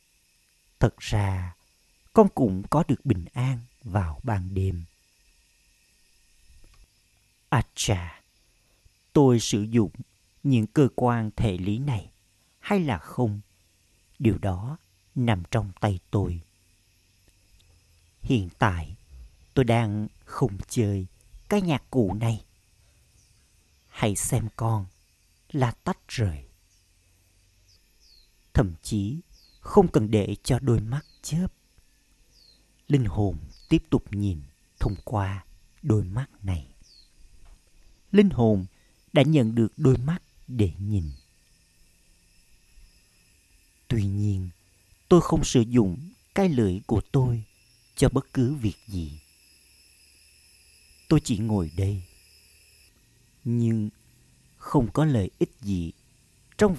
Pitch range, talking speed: 90-120 Hz, 105 wpm